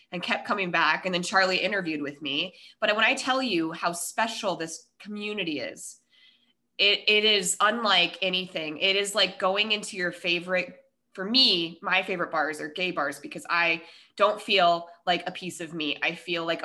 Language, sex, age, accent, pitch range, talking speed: English, female, 20-39, American, 165-210 Hz, 185 wpm